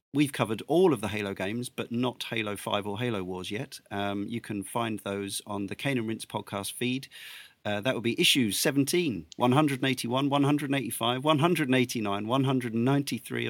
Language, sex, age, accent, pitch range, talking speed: English, male, 40-59, British, 100-125 Hz, 165 wpm